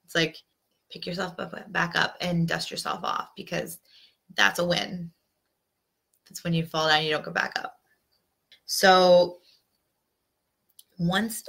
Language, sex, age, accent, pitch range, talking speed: English, female, 20-39, American, 170-205 Hz, 135 wpm